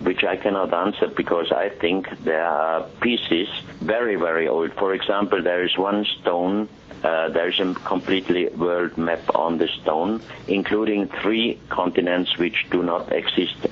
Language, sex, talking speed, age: English, male, 160 wpm, 60-79